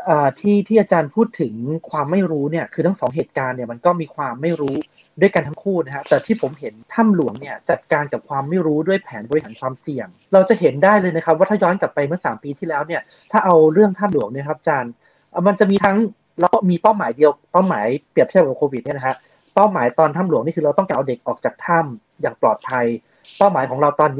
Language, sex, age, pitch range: Thai, male, 30-49, 150-200 Hz